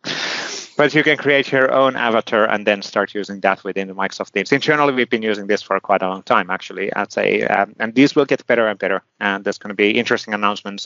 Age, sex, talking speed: 30-49, male, 245 wpm